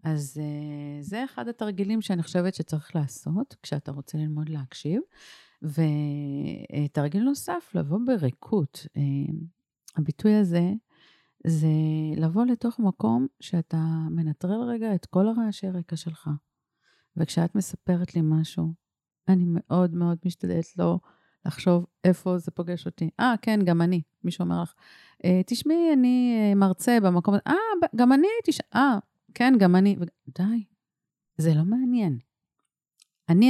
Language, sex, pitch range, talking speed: Hebrew, female, 160-205 Hz, 130 wpm